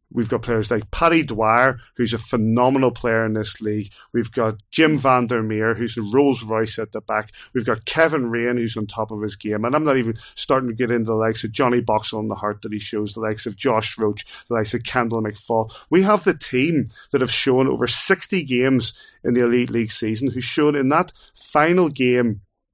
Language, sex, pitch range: English, male, 110-135 Hz